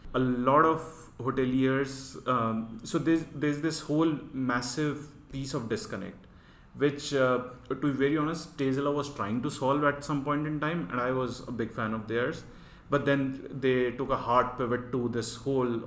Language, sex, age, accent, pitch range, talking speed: English, male, 30-49, Indian, 115-135 Hz, 180 wpm